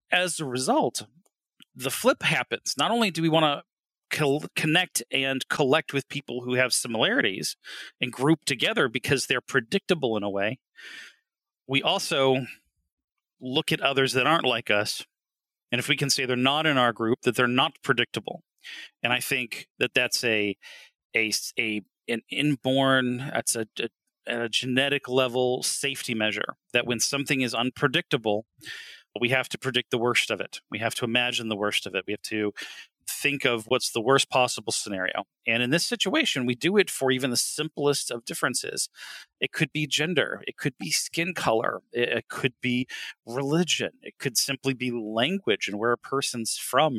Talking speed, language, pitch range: 170 wpm, English, 120-150 Hz